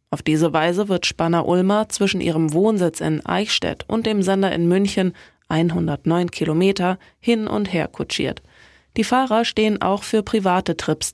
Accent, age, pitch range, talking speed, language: German, 20-39, 170-210 Hz, 155 wpm, German